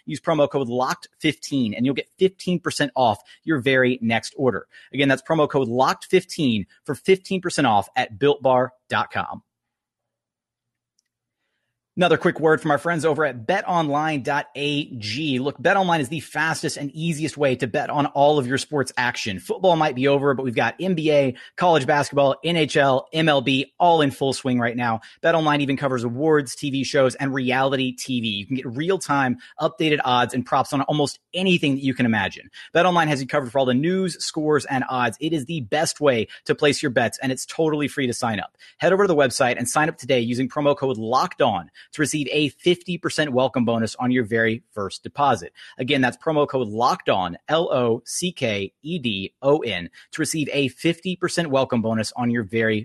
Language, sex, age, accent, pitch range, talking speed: English, male, 30-49, American, 125-155 Hz, 180 wpm